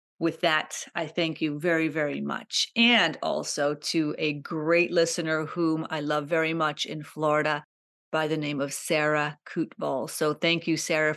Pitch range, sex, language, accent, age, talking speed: 160-185 Hz, female, English, American, 40-59, 165 wpm